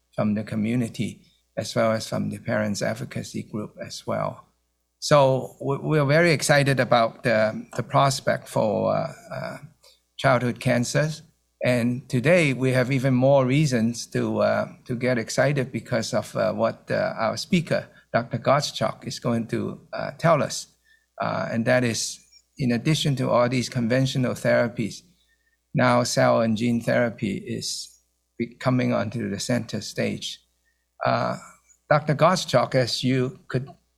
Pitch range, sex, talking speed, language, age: 115-140 Hz, male, 140 wpm, English, 50-69